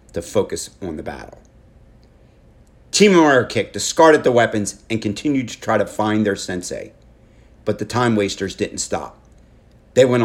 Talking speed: 160 wpm